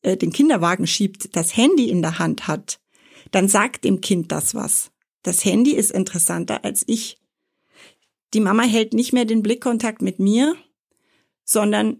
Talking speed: 155 wpm